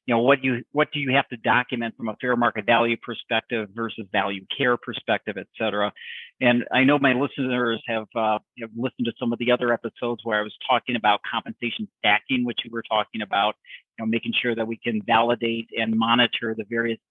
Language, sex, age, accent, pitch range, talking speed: English, male, 50-69, American, 110-125 Hz, 210 wpm